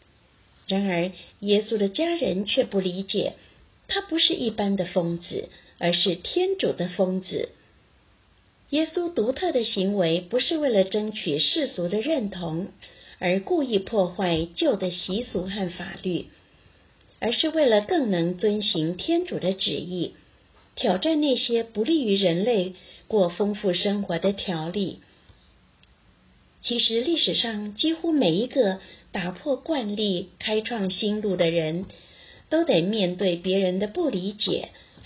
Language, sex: Chinese, female